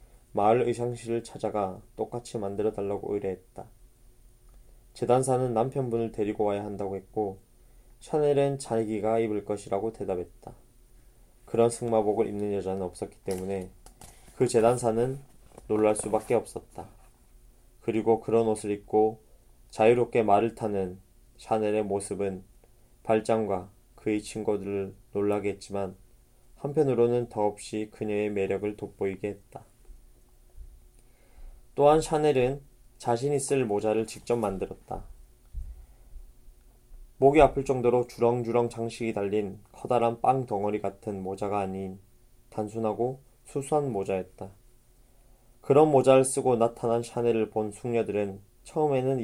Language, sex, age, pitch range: Korean, male, 20-39, 100-120 Hz